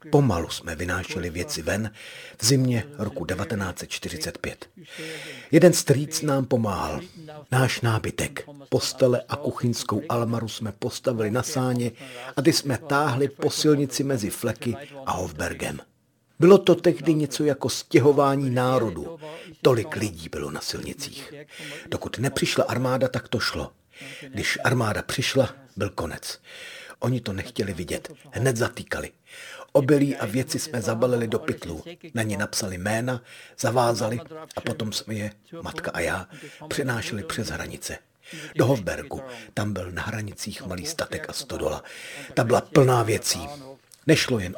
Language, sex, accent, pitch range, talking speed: Czech, male, native, 110-145 Hz, 135 wpm